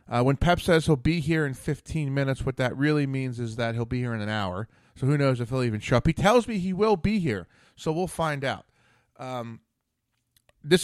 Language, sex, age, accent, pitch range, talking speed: English, male, 30-49, American, 115-160 Hz, 240 wpm